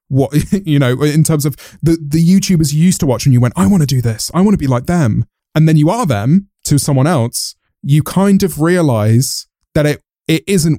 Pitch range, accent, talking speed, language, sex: 125-170 Hz, British, 240 wpm, English, male